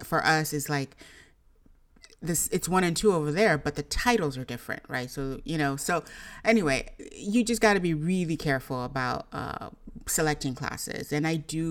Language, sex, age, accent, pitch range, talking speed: English, female, 30-49, American, 145-180 Hz, 185 wpm